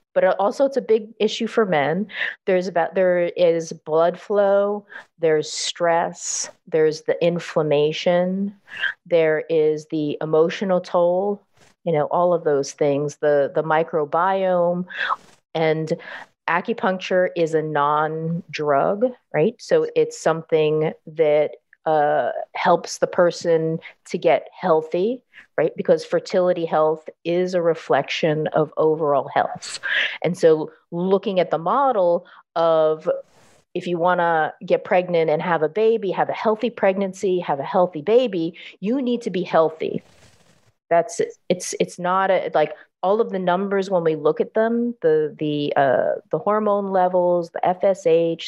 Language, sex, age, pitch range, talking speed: English, female, 40-59, 165-205 Hz, 140 wpm